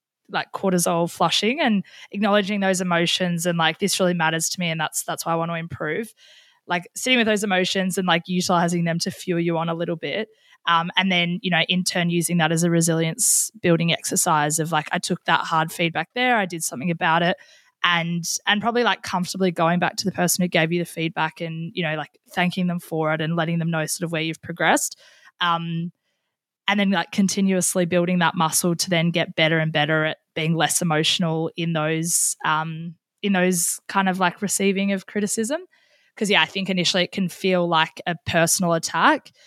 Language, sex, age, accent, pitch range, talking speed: English, female, 20-39, Australian, 165-185 Hz, 210 wpm